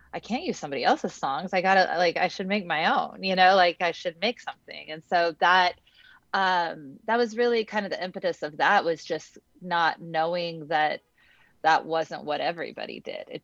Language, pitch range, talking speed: English, 160-195 Hz, 200 wpm